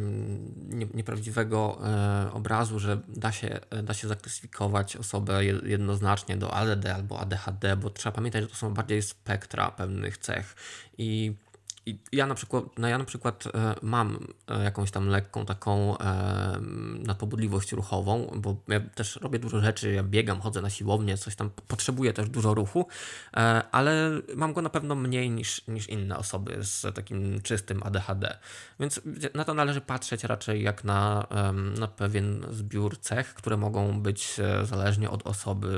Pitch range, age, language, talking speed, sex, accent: 100-115 Hz, 20-39, Polish, 155 wpm, male, native